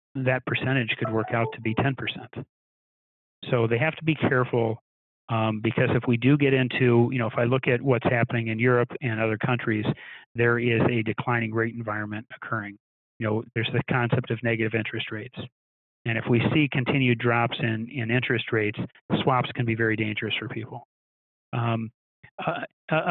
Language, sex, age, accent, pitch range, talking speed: English, male, 30-49, American, 110-125 Hz, 180 wpm